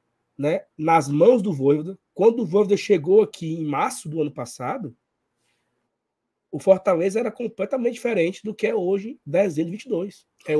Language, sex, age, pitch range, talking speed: Portuguese, male, 20-39, 145-210 Hz, 155 wpm